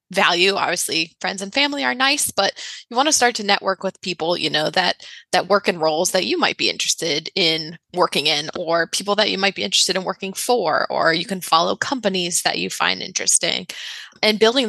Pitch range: 180-220 Hz